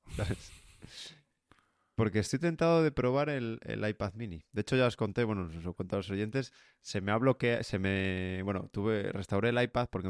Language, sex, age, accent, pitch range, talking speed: Spanish, male, 20-39, Spanish, 95-120 Hz, 195 wpm